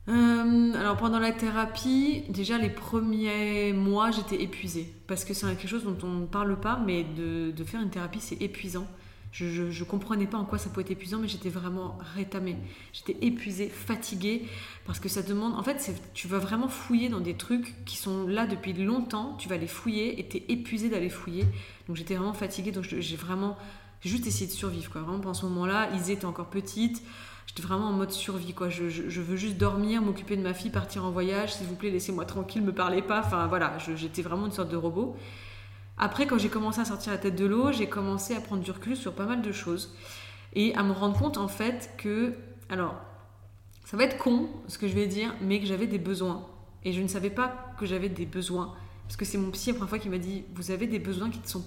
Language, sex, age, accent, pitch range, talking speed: French, female, 20-39, French, 175-215 Hz, 240 wpm